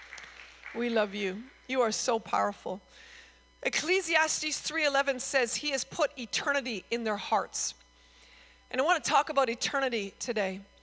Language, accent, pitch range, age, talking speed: English, American, 220-290 Hz, 40-59, 140 wpm